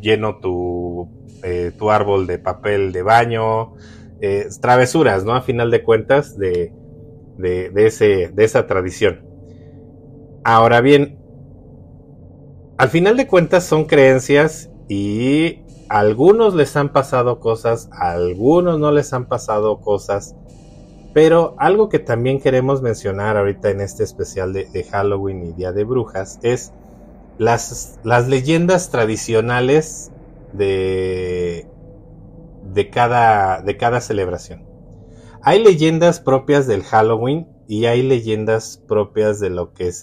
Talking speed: 130 wpm